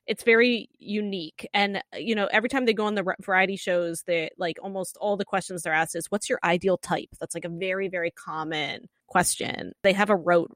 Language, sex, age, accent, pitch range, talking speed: English, female, 20-39, American, 175-225 Hz, 215 wpm